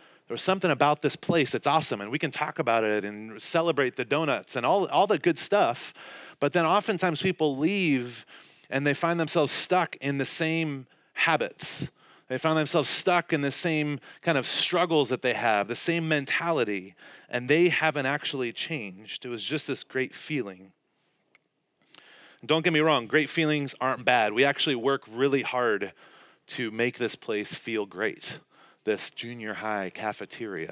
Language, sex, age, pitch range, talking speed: English, male, 30-49, 125-165 Hz, 170 wpm